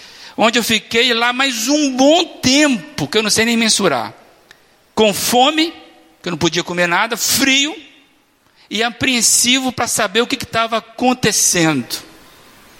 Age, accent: 50-69, Brazilian